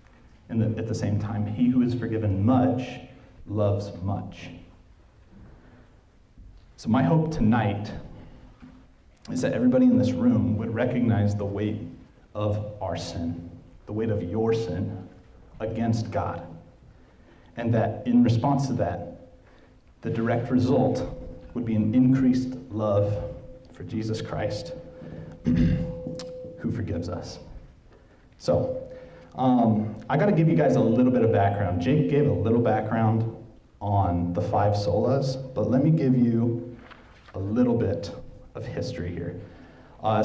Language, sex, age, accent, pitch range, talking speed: English, male, 30-49, American, 100-125 Hz, 135 wpm